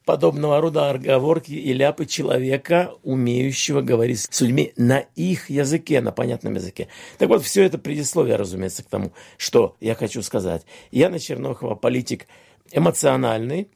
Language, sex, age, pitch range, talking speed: Russian, male, 50-69, 130-180 Hz, 140 wpm